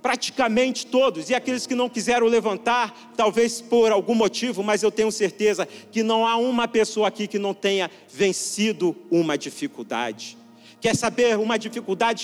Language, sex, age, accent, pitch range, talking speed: Portuguese, male, 40-59, Brazilian, 215-265 Hz, 155 wpm